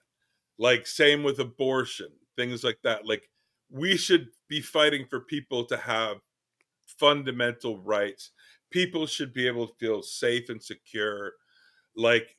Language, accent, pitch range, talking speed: English, American, 120-165 Hz, 135 wpm